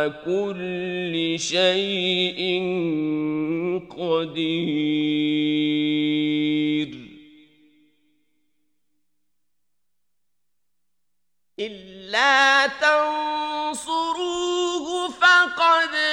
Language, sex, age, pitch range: Turkish, male, 50-69, 195-330 Hz